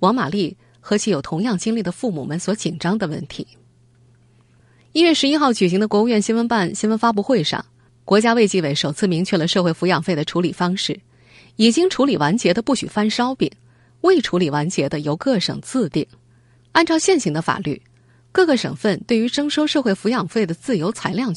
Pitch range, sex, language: 140-215 Hz, female, Chinese